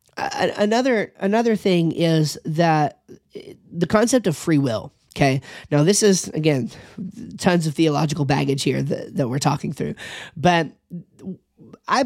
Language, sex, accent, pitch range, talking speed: English, male, American, 145-180 Hz, 135 wpm